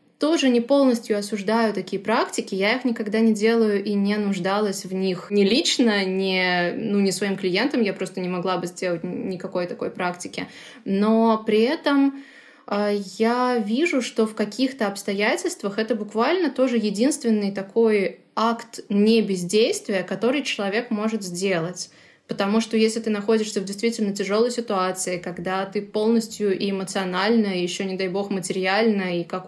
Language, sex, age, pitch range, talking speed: Russian, female, 20-39, 190-225 Hz, 155 wpm